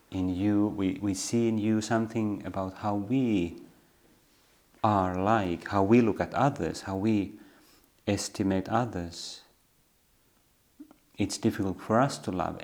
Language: Finnish